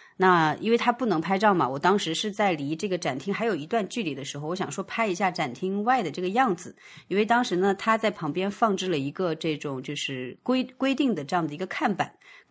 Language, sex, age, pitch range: Chinese, female, 30-49, 160-210 Hz